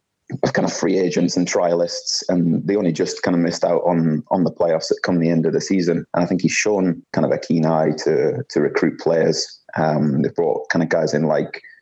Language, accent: English, British